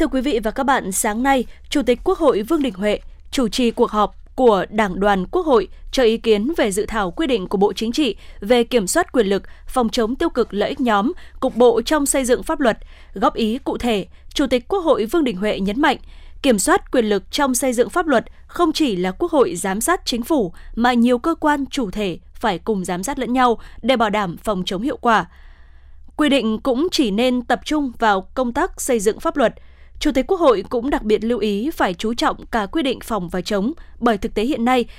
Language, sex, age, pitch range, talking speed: Vietnamese, female, 20-39, 215-280 Hz, 245 wpm